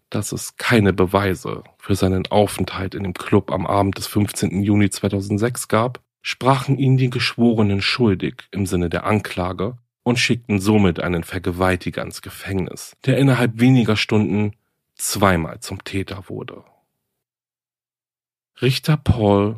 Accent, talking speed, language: German, 130 wpm, German